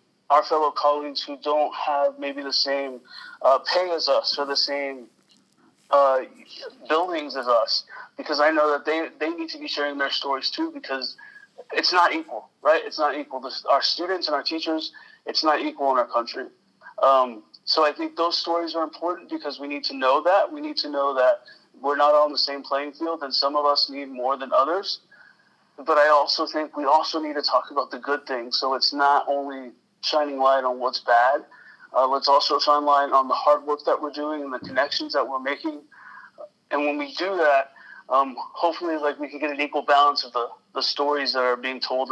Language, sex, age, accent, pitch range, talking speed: English, male, 30-49, American, 135-160 Hz, 215 wpm